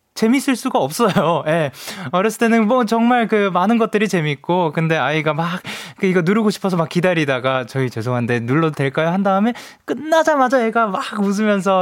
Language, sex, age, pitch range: Korean, male, 20-39, 120-195 Hz